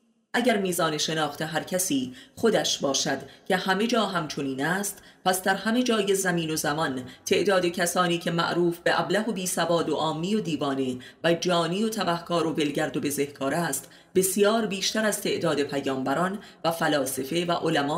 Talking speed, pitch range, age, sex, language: 165 wpm, 150-195 Hz, 30-49, female, Persian